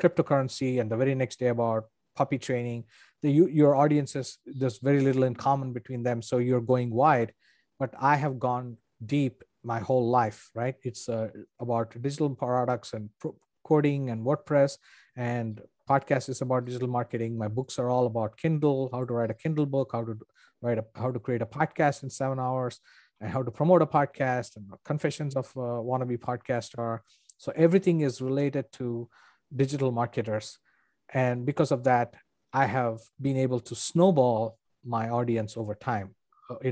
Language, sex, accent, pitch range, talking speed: English, male, Indian, 115-140 Hz, 175 wpm